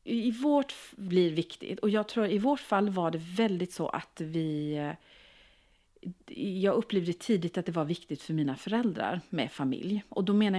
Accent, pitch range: Swedish, 160-210 Hz